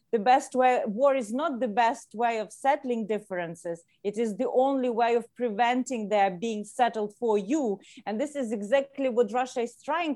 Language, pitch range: English, 205-255 Hz